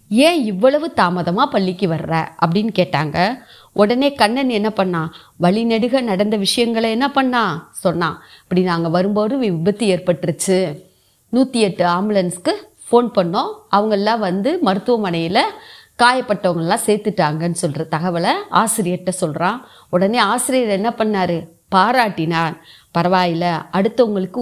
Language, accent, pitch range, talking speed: Tamil, native, 180-235 Hz, 110 wpm